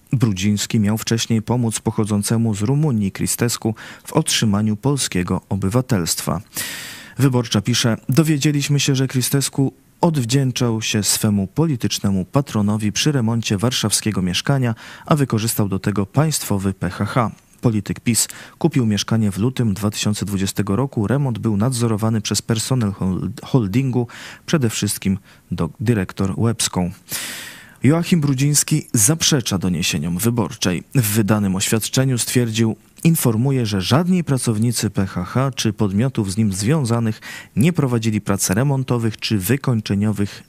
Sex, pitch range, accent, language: male, 105-130 Hz, native, Polish